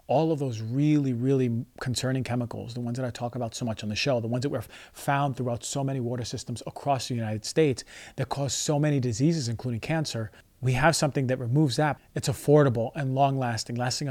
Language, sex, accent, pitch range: English, male, American, 120-145 Hz